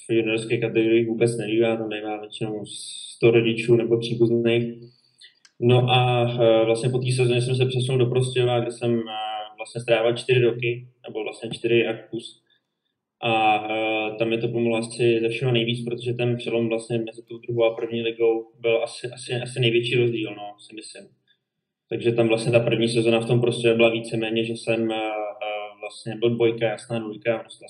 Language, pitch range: Czech, 115-120 Hz